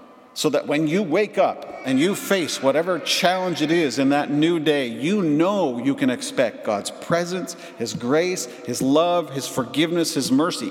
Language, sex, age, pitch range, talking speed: English, male, 50-69, 145-245 Hz, 180 wpm